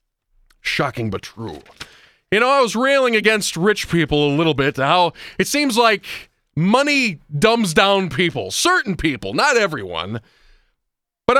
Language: English